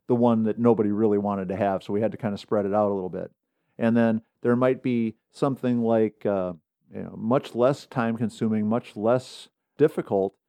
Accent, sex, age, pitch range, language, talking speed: American, male, 50-69, 110-125 Hz, English, 210 wpm